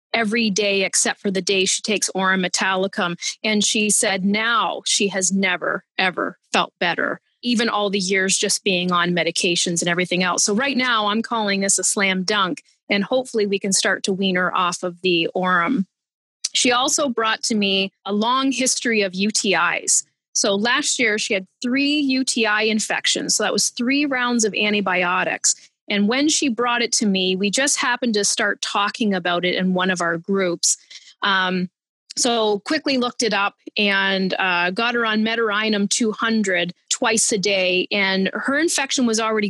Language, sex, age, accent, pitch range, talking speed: English, female, 30-49, American, 190-230 Hz, 180 wpm